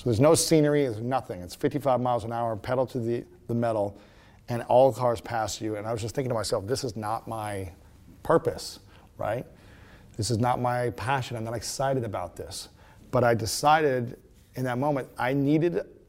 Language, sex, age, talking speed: English, male, 40-59, 195 wpm